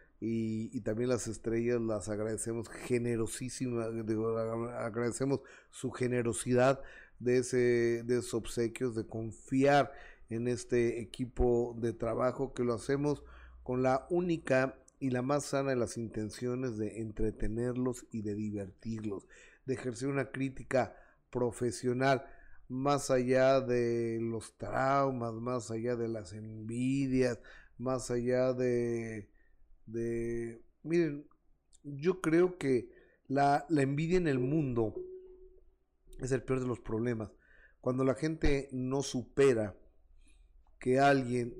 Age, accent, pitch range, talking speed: 30-49, Mexican, 115-135 Hz, 120 wpm